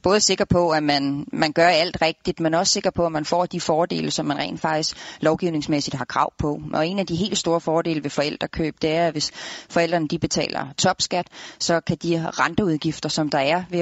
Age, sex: 30-49, female